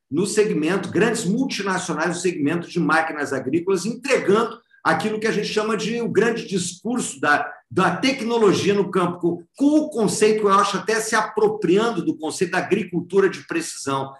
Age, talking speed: 50-69, 160 wpm